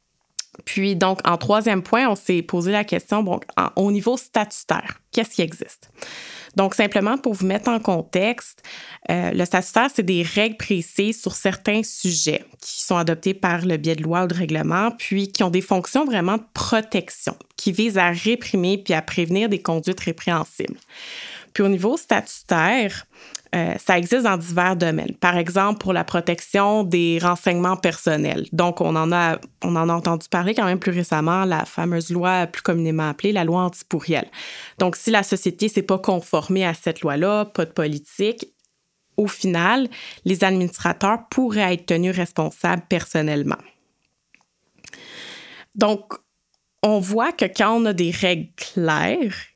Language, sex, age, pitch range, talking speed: French, female, 20-39, 175-210 Hz, 165 wpm